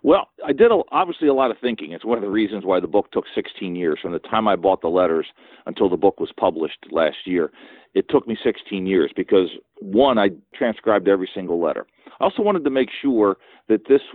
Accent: American